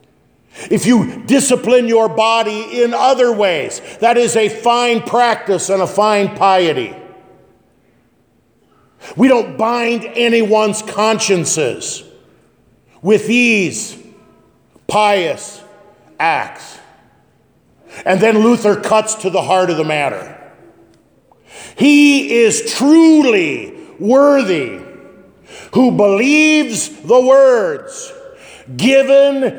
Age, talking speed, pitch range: 50-69, 90 wpm, 170-245 Hz